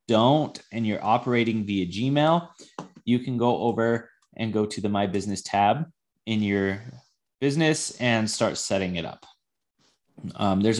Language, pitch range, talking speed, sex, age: English, 100-130 Hz, 150 wpm, male, 20-39